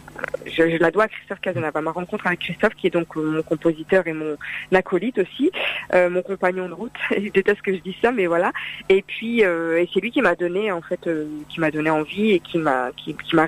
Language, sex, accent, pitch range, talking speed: French, female, French, 165-195 Hz, 250 wpm